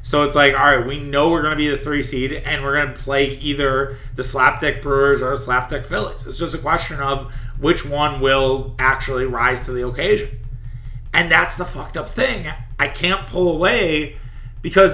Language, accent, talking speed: English, American, 205 wpm